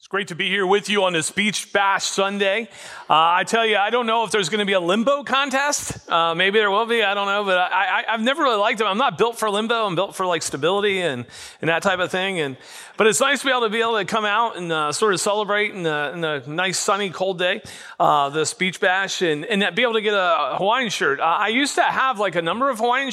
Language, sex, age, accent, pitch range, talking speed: English, male, 40-59, American, 160-210 Hz, 285 wpm